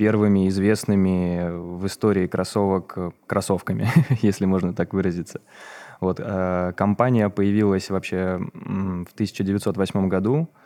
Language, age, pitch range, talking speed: Russian, 20-39, 90-100 Hz, 95 wpm